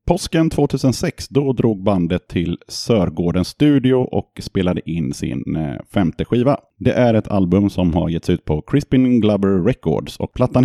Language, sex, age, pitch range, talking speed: Swedish, male, 30-49, 85-105 Hz, 160 wpm